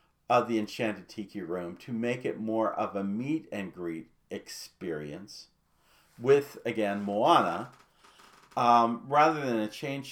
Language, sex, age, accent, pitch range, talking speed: English, male, 50-69, American, 105-145 Hz, 125 wpm